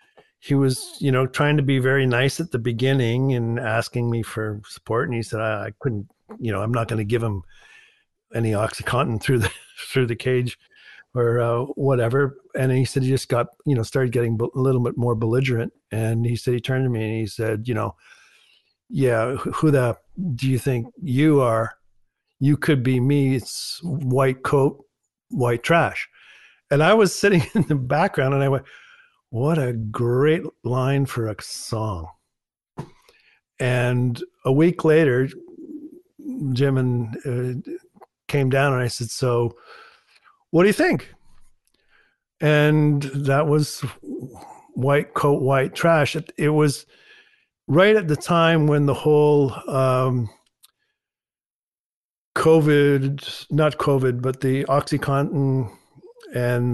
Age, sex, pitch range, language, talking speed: 50-69, male, 120-145 Hz, English, 150 wpm